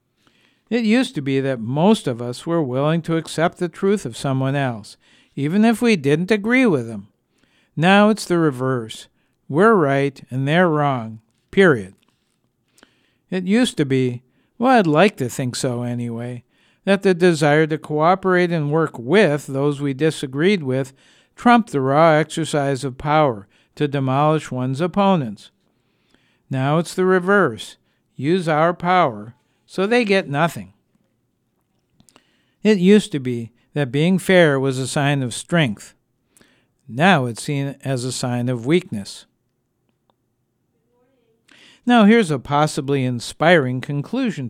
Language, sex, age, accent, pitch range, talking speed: English, male, 60-79, American, 130-185 Hz, 140 wpm